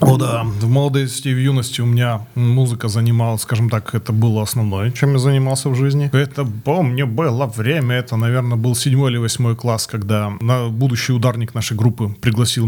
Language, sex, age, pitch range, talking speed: Russian, male, 30-49, 110-135 Hz, 205 wpm